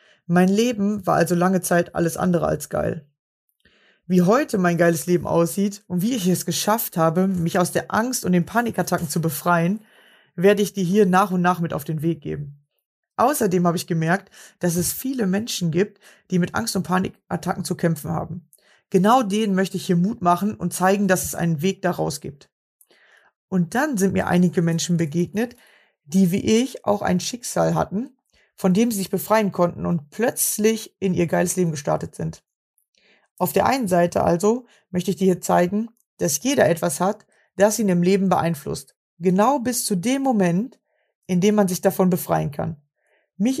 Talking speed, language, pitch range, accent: 185 wpm, German, 175-205 Hz, German